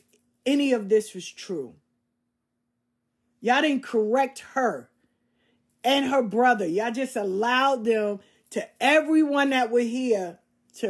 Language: English